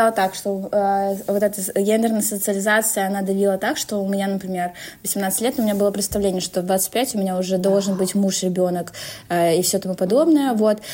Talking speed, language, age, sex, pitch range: 190 wpm, Russian, 20-39, female, 185-215 Hz